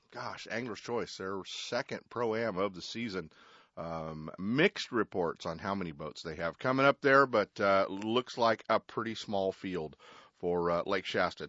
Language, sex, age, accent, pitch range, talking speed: English, male, 40-59, American, 90-115 Hz, 180 wpm